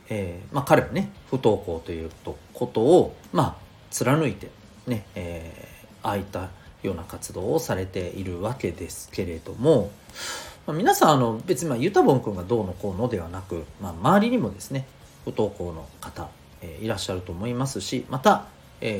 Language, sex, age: Japanese, male, 40-59